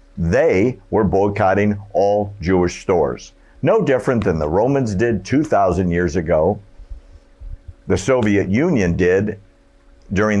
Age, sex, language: 60-79, male, English